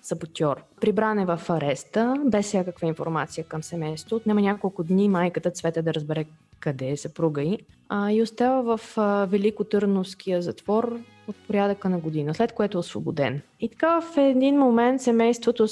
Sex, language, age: female, Bulgarian, 20-39